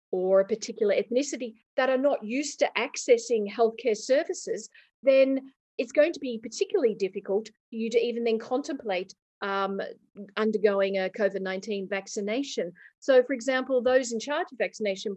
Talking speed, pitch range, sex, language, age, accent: 150 wpm, 220-280 Hz, female, English, 40-59, Australian